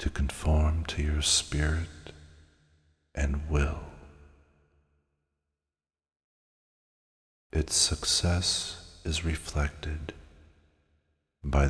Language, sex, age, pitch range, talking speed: English, male, 50-69, 70-75 Hz, 60 wpm